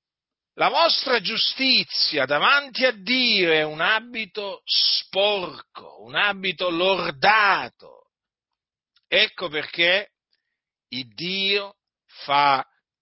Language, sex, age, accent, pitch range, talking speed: Italian, male, 50-69, native, 155-215 Hz, 85 wpm